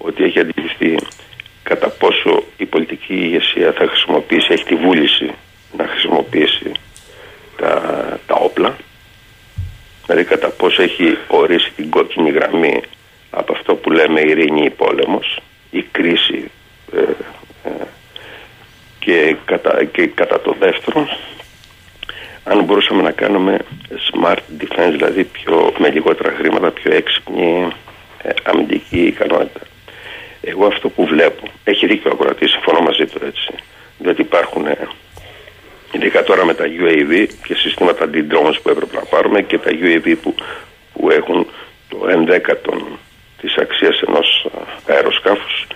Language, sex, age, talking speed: Greek, male, 60-79, 120 wpm